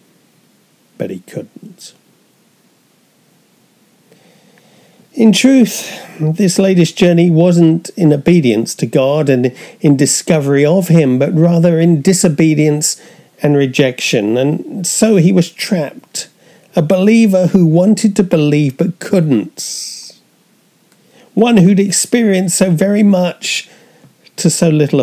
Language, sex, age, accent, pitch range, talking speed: English, male, 40-59, British, 135-185 Hz, 110 wpm